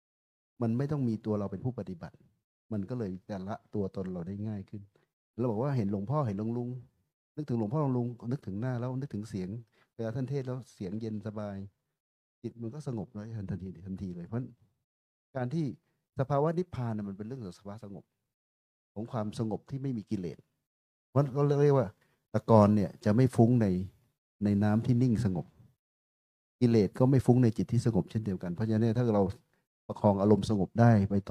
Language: Thai